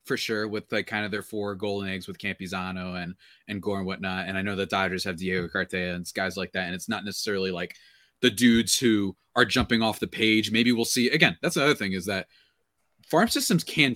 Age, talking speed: 20-39, 230 wpm